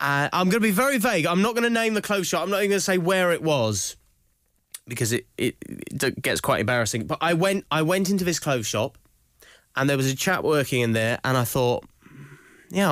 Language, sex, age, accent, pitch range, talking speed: English, male, 20-39, British, 130-190 Hz, 240 wpm